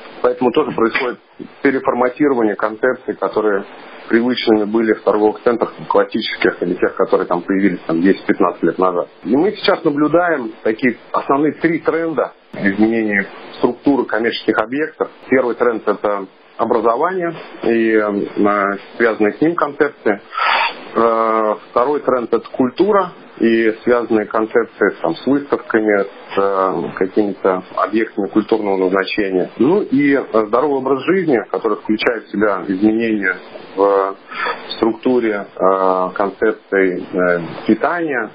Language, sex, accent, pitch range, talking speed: Russian, male, native, 100-125 Hz, 115 wpm